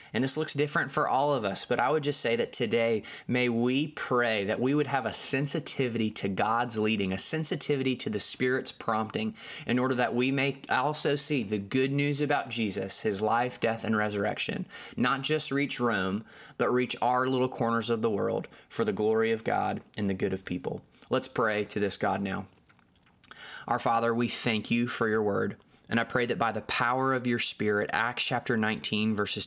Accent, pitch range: American, 110-135 Hz